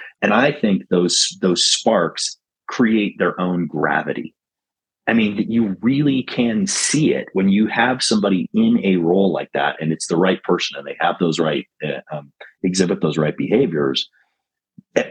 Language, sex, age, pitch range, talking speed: English, male, 30-49, 85-110 Hz, 170 wpm